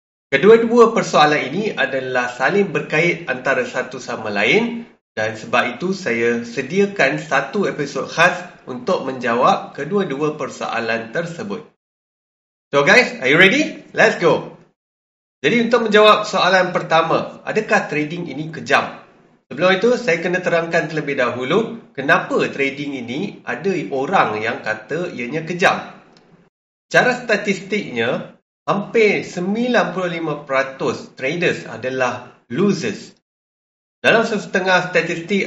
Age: 30-49